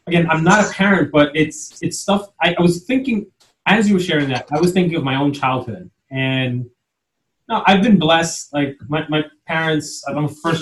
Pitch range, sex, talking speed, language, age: 125-160 Hz, male, 205 wpm, English, 20-39